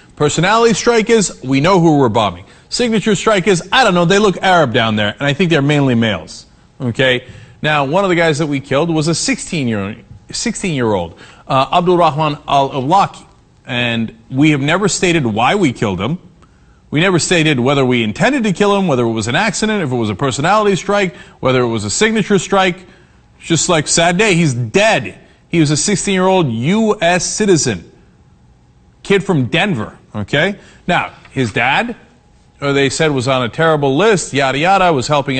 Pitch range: 140-220 Hz